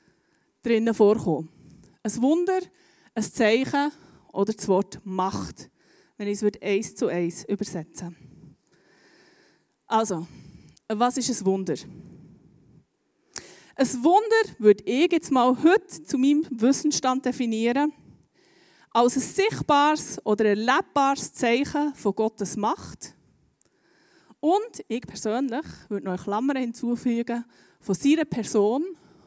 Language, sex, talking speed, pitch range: German, female, 105 wpm, 210-300 Hz